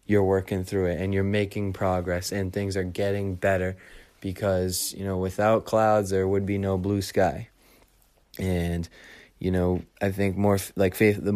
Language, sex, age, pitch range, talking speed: English, male, 20-39, 95-100 Hz, 180 wpm